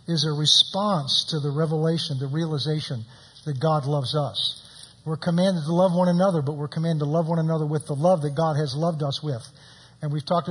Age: 50-69